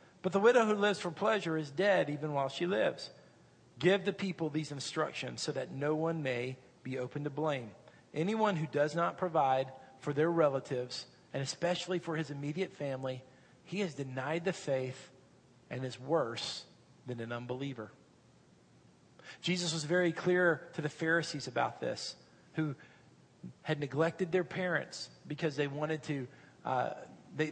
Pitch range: 140-185 Hz